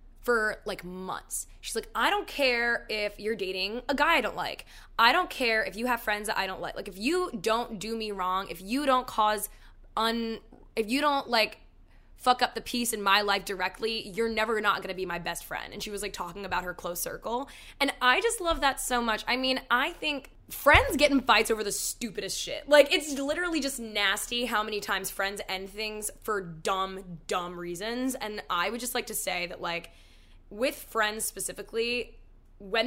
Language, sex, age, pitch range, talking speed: English, female, 10-29, 190-240 Hz, 210 wpm